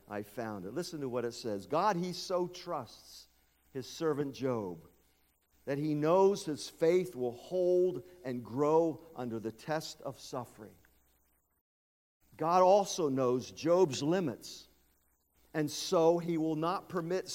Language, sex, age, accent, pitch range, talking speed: English, male, 50-69, American, 110-180 Hz, 140 wpm